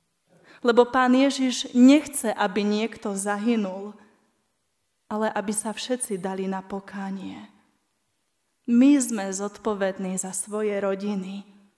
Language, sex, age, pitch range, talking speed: Slovak, female, 20-39, 210-255 Hz, 100 wpm